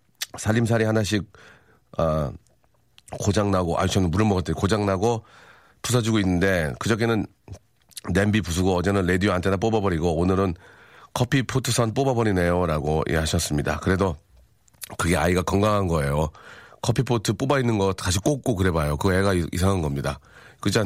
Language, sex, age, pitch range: Korean, male, 40-59, 85-115 Hz